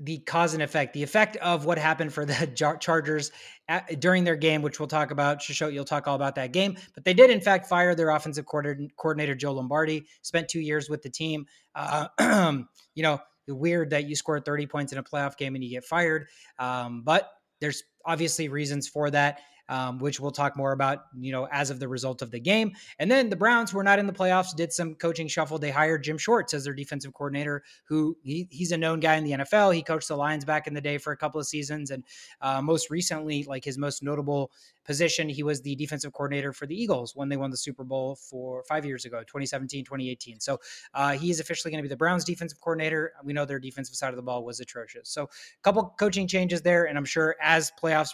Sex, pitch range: male, 140-165 Hz